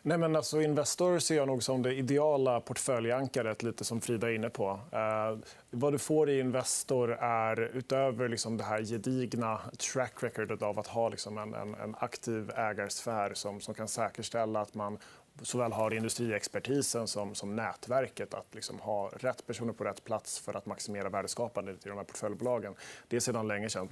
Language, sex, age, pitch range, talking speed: Swedish, male, 30-49, 105-125 Hz, 185 wpm